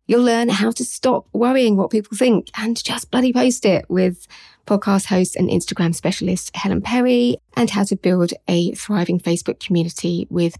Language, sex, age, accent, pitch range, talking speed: English, female, 30-49, British, 175-215 Hz, 175 wpm